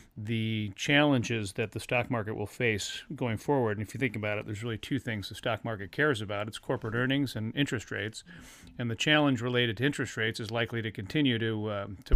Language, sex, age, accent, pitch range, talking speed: English, male, 40-59, American, 105-125 Hz, 220 wpm